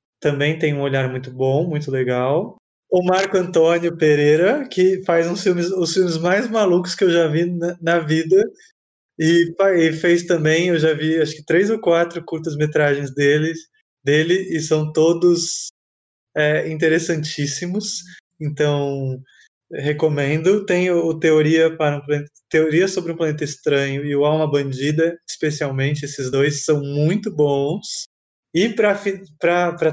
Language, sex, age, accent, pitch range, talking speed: Portuguese, male, 20-39, Brazilian, 140-170 Hz, 145 wpm